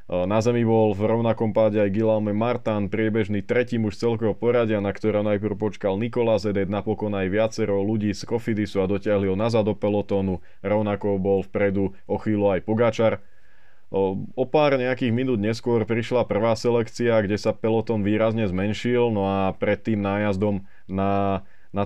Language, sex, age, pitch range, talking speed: Slovak, male, 20-39, 100-115 Hz, 155 wpm